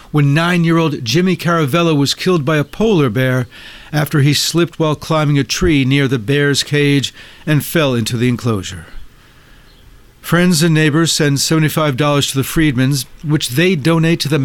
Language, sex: English, male